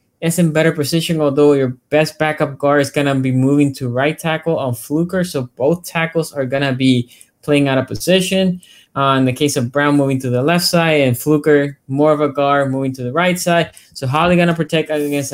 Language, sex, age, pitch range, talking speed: English, male, 20-39, 130-160 Hz, 230 wpm